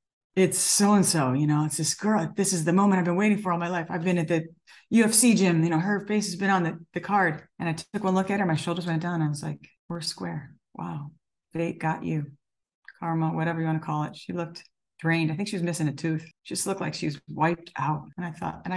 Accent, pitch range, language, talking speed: American, 160-200 Hz, English, 270 wpm